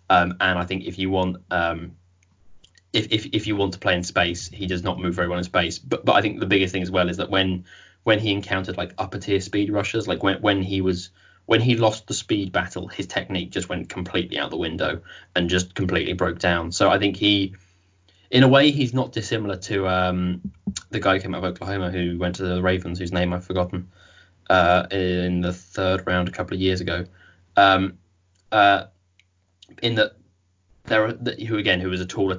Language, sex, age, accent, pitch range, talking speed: English, male, 20-39, British, 90-100 Hz, 220 wpm